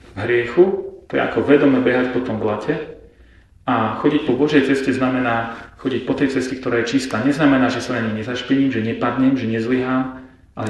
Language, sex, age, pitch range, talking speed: Slovak, male, 40-59, 110-140 Hz, 180 wpm